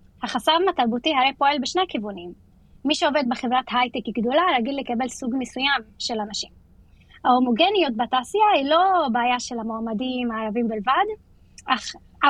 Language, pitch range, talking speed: Hebrew, 240-300 Hz, 135 wpm